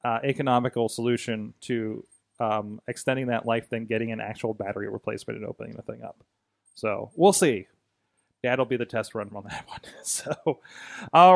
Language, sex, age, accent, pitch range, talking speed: English, male, 30-49, American, 120-150 Hz, 170 wpm